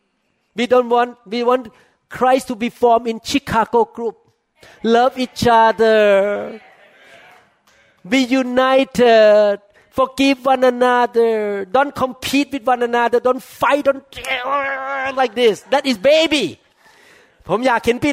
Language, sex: Thai, male